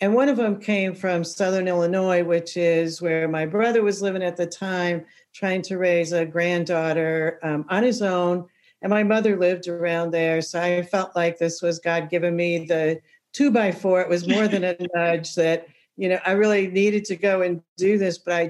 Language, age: English, 60-79